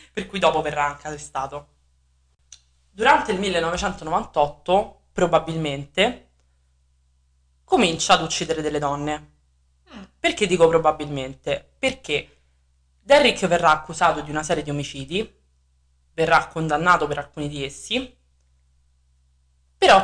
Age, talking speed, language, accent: 20-39, 100 wpm, Italian, native